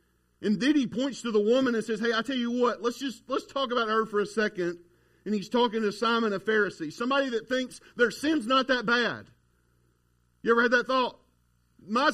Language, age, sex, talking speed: English, 40-59, male, 215 wpm